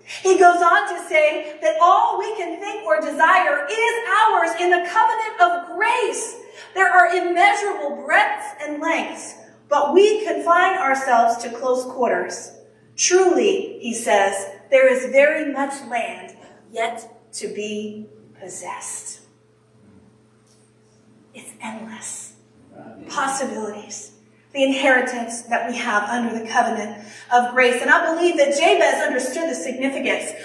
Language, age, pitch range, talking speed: English, 40-59, 260-370 Hz, 130 wpm